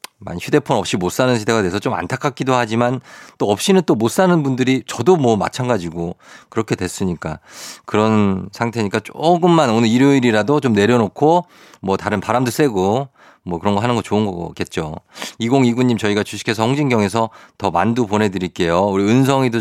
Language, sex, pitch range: Korean, male, 105-145 Hz